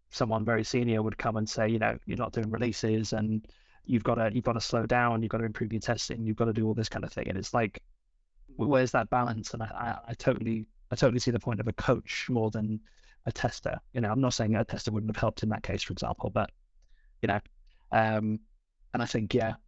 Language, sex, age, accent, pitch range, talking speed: English, male, 20-39, British, 110-120 Hz, 255 wpm